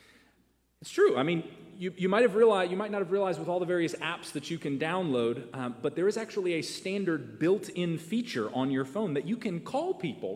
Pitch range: 140-195 Hz